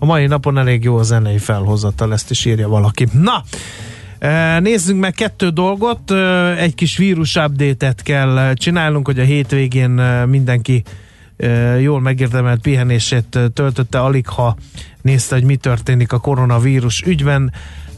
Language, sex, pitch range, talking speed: Hungarian, male, 125-145 Hz, 135 wpm